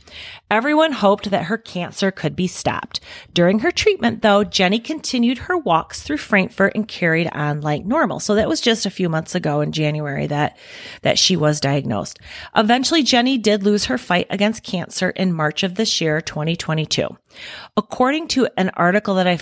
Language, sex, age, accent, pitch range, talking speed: English, female, 30-49, American, 165-225 Hz, 180 wpm